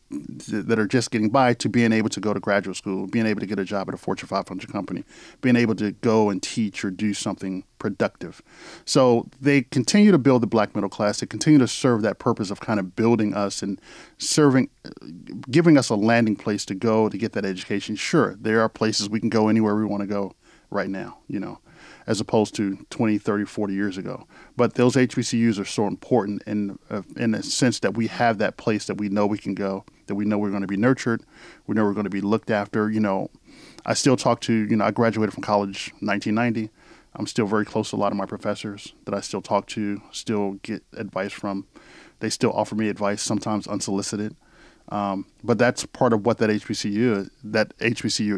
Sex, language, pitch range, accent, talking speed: male, English, 100-115 Hz, American, 220 wpm